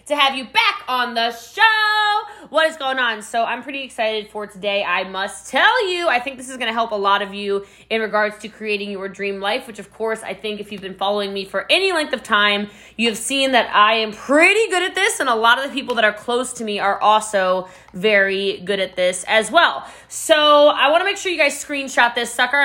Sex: female